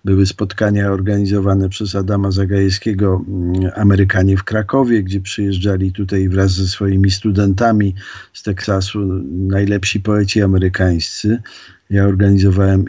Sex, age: male, 50-69